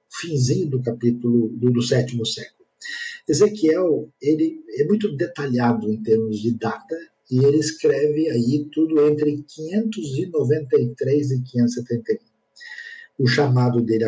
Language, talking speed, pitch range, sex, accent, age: Portuguese, 120 wpm, 120-160 Hz, male, Brazilian, 50-69